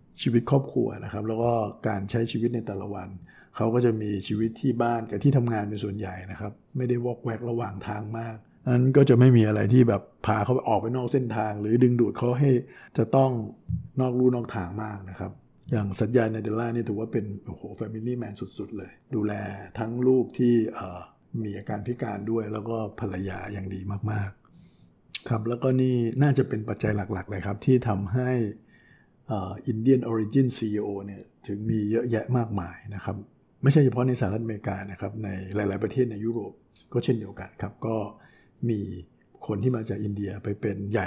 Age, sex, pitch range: 60-79, male, 100-120 Hz